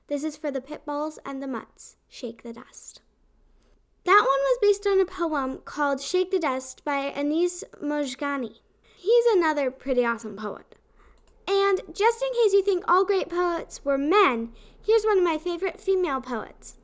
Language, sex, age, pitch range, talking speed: English, female, 10-29, 265-360 Hz, 175 wpm